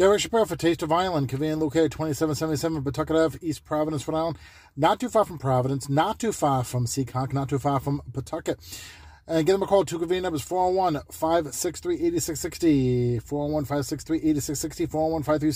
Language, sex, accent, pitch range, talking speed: English, male, American, 125-170 Hz, 160 wpm